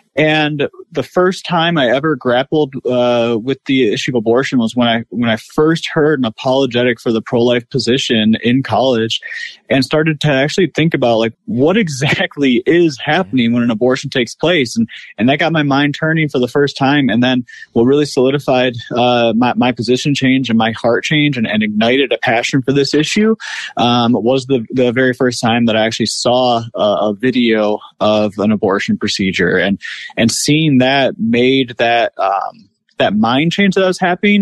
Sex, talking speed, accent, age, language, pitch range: male, 190 wpm, American, 20-39, English, 115-155 Hz